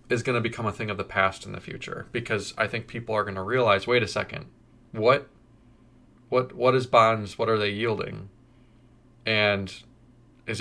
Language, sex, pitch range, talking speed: English, male, 110-130 Hz, 180 wpm